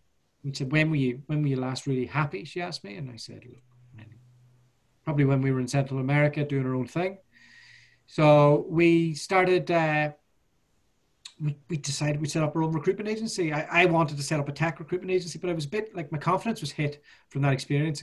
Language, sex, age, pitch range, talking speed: English, male, 30-49, 130-155 Hz, 220 wpm